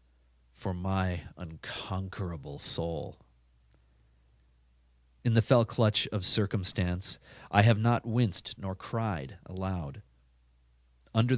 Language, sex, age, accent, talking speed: English, male, 30-49, American, 95 wpm